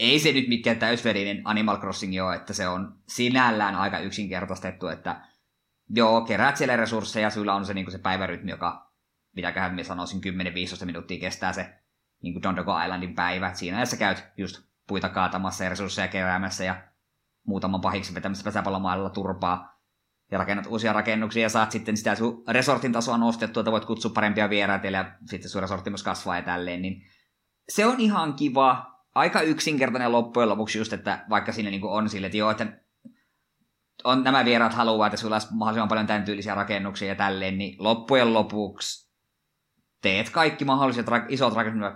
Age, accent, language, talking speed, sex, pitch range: 20-39, native, Finnish, 170 wpm, male, 95-115 Hz